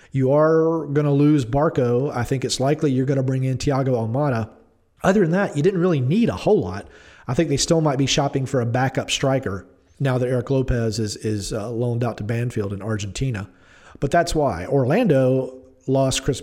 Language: English